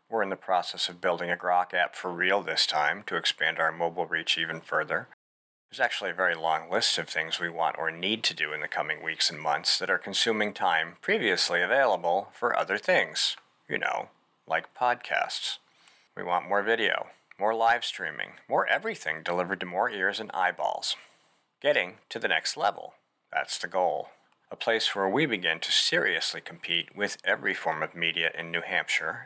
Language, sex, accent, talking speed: English, male, American, 190 wpm